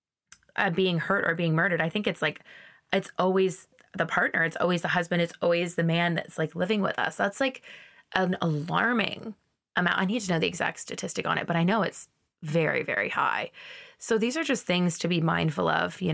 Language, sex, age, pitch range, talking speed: English, female, 20-39, 160-185 Hz, 215 wpm